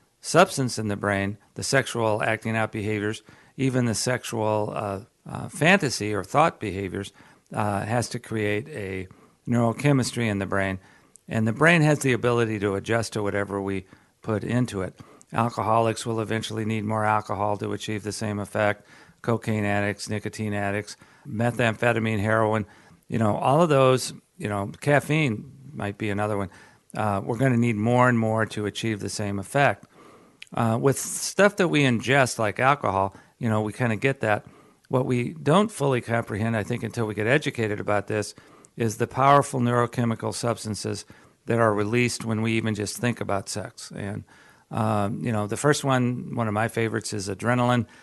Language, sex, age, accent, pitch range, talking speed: English, male, 50-69, American, 105-125 Hz, 175 wpm